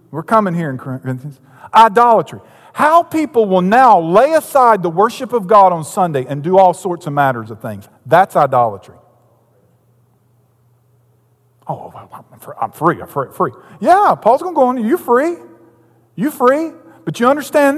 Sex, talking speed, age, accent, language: male, 160 wpm, 50-69, American, English